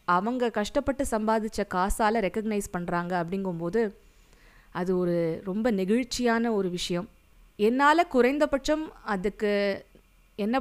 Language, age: Tamil, 20-39